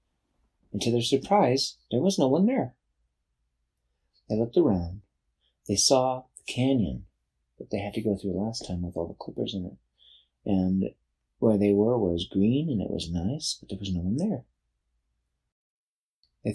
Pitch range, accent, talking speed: 85-120 Hz, American, 170 wpm